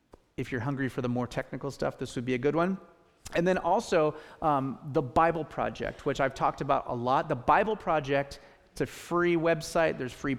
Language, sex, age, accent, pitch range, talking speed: English, male, 30-49, American, 130-165 Hz, 210 wpm